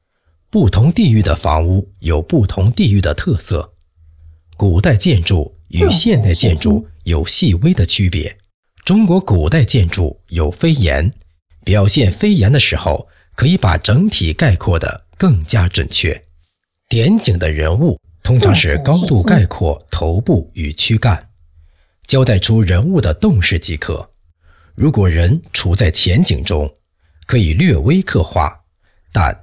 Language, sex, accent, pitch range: Chinese, male, native, 80-110 Hz